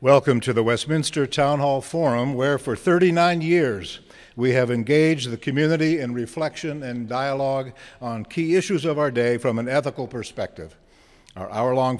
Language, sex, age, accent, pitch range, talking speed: English, male, 60-79, American, 120-150 Hz, 160 wpm